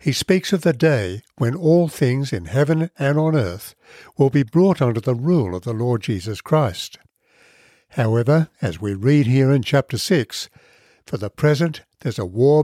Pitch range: 115-155 Hz